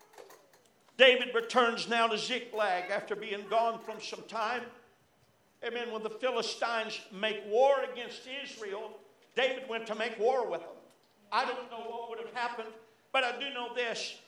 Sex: male